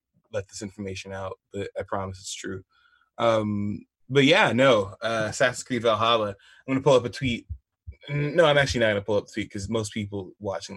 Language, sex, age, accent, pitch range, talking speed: English, male, 20-39, American, 100-125 Hz, 195 wpm